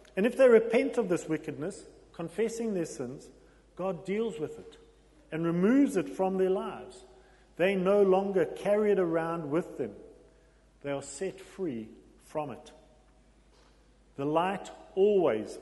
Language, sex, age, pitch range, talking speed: English, male, 40-59, 140-190 Hz, 140 wpm